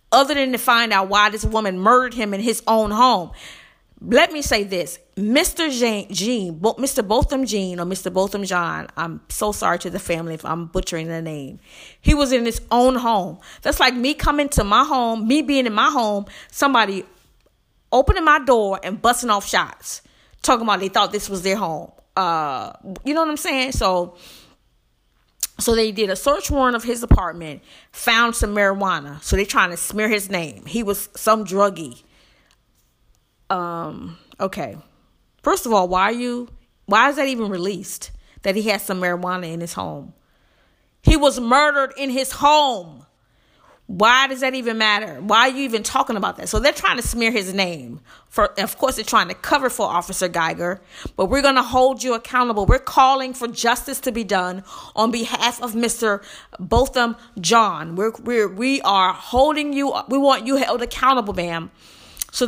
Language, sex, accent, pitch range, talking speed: English, female, American, 185-250 Hz, 185 wpm